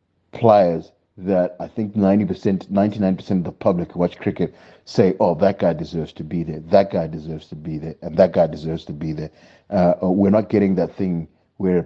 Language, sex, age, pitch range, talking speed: English, male, 30-49, 85-95 Hz, 215 wpm